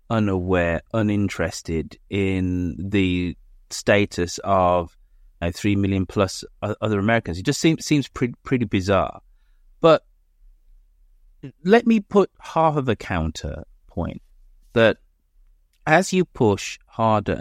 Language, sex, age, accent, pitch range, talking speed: English, male, 30-49, British, 85-110 Hz, 115 wpm